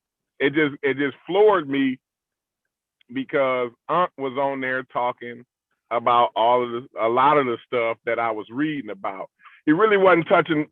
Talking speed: 170 wpm